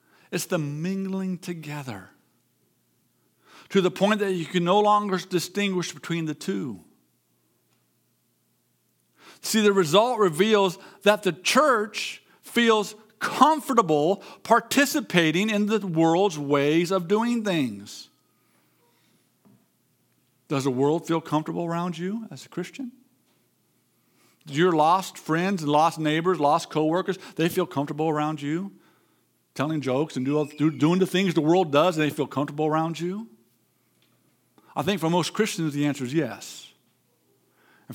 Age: 50-69